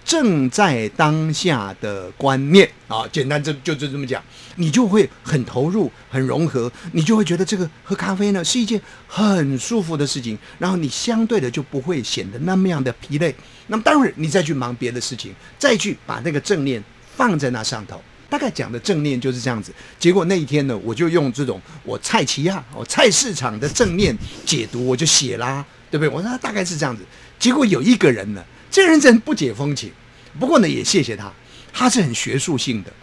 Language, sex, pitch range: Chinese, male, 130-205 Hz